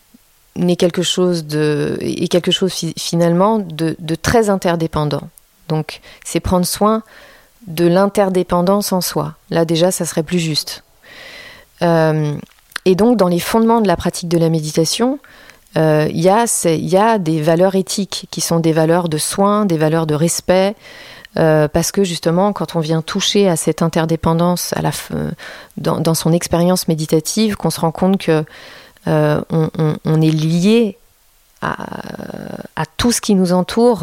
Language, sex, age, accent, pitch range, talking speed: French, female, 30-49, French, 165-200 Hz, 160 wpm